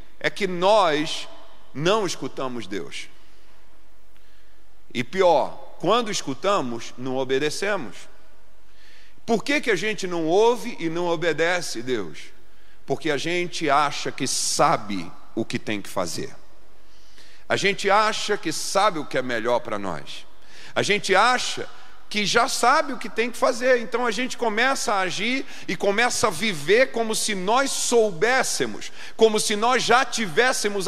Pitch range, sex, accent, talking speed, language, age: 195-265 Hz, male, Brazilian, 145 wpm, English, 50-69